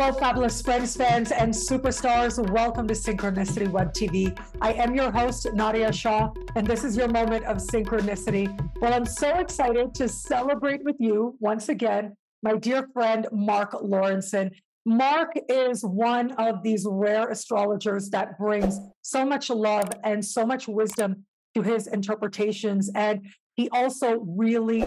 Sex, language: female, English